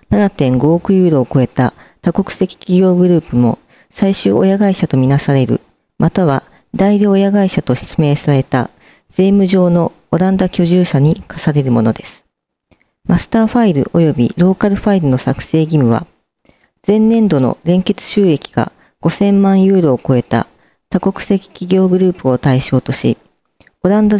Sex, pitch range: female, 135-195 Hz